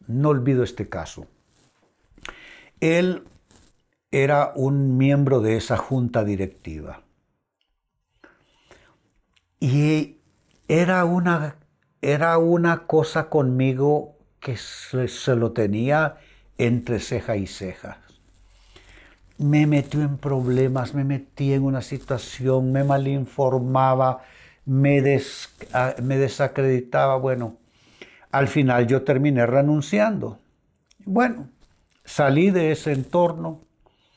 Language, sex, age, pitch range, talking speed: Spanish, male, 60-79, 120-155 Hz, 90 wpm